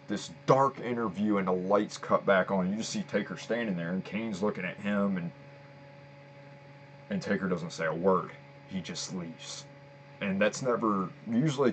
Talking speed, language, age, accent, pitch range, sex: 175 wpm, English, 30-49, American, 105-140 Hz, male